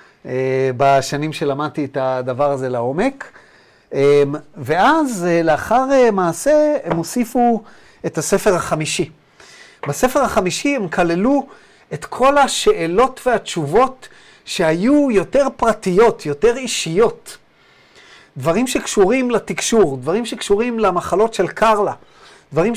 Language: Hebrew